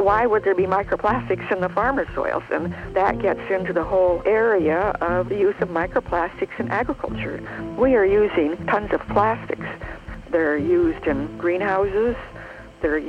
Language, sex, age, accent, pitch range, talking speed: English, female, 60-79, American, 155-190 Hz, 155 wpm